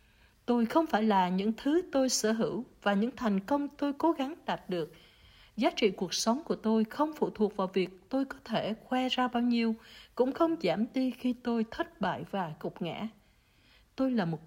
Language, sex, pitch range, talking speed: Vietnamese, female, 185-255 Hz, 205 wpm